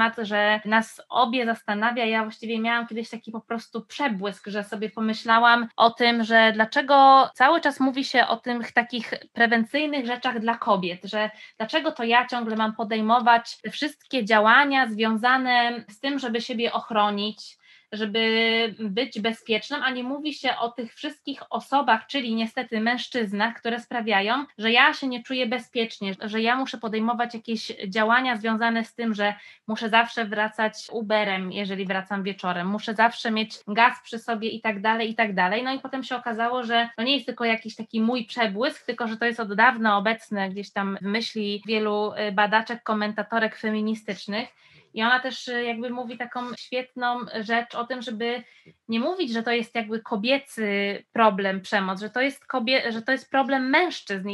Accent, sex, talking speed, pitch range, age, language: native, female, 170 wpm, 220-245 Hz, 20-39, Polish